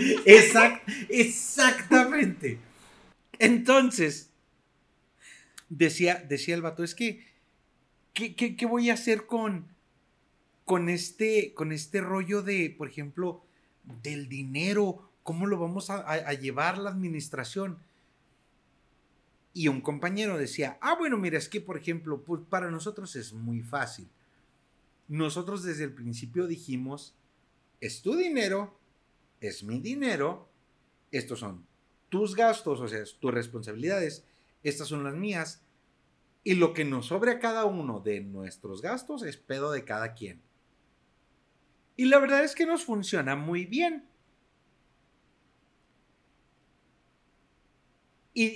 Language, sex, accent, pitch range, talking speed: Spanish, male, Mexican, 140-205 Hz, 125 wpm